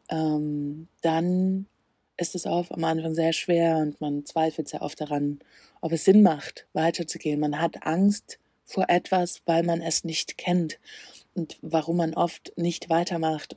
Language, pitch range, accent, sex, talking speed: German, 160-180 Hz, German, female, 155 wpm